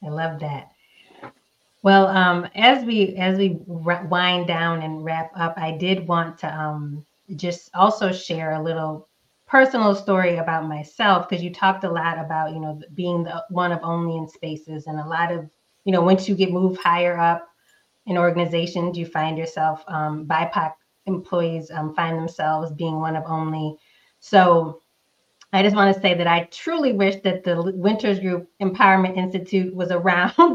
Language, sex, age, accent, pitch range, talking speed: English, female, 20-39, American, 165-190 Hz, 175 wpm